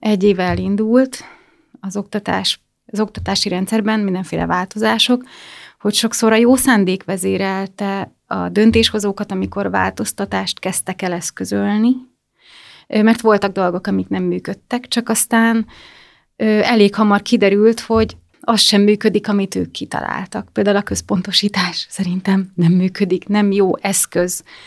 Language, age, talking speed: Hungarian, 30-49, 120 wpm